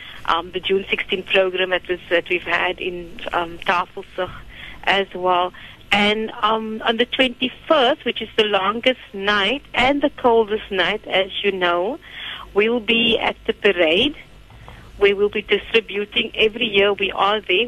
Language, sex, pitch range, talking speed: English, female, 180-225 Hz, 150 wpm